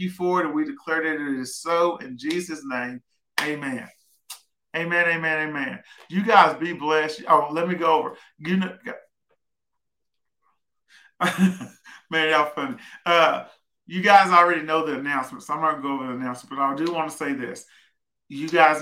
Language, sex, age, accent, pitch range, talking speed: English, male, 40-59, American, 150-175 Hz, 175 wpm